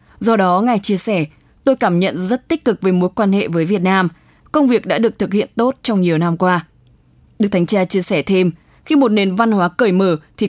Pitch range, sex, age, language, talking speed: 175-225 Hz, female, 20-39, English, 245 wpm